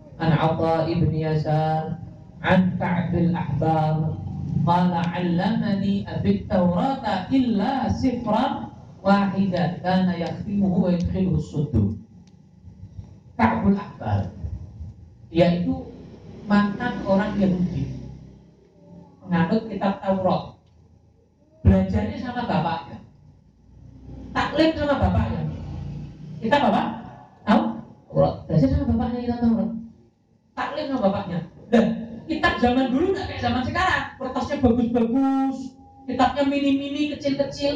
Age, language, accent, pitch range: 40-59, Indonesian, native, 155-235 Hz